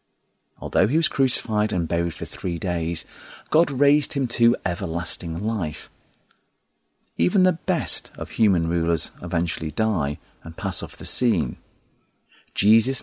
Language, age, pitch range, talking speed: English, 40-59, 85-120 Hz, 135 wpm